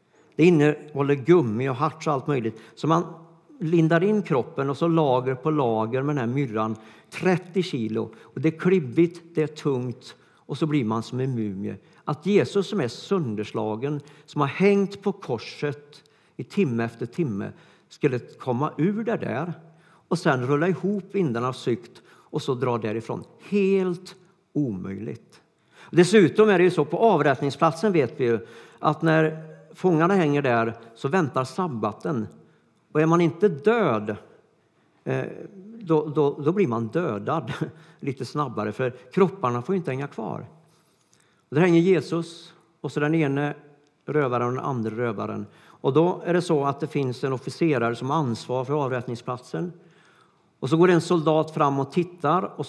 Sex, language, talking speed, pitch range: male, Swedish, 165 wpm, 130-170 Hz